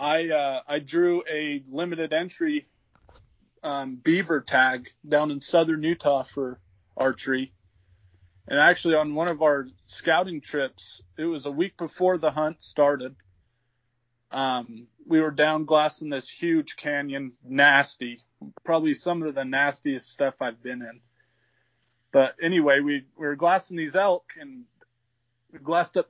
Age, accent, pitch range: 30-49, American, 120-170 Hz